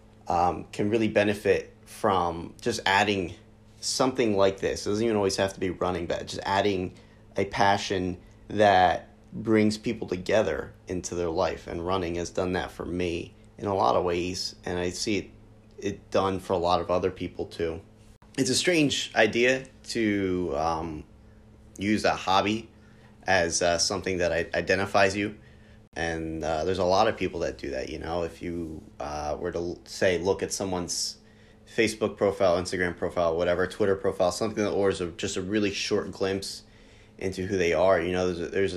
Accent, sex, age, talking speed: American, male, 30-49, 180 wpm